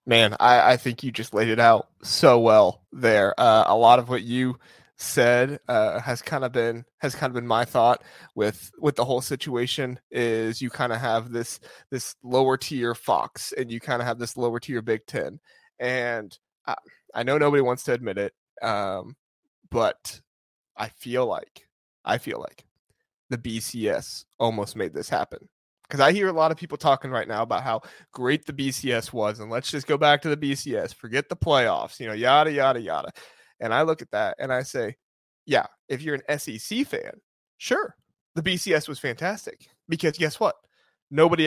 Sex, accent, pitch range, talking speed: male, American, 115-150 Hz, 190 wpm